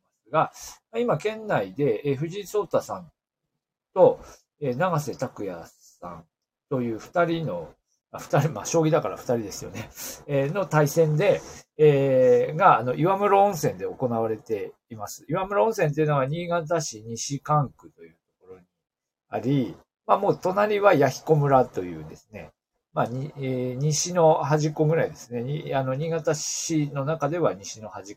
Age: 40-59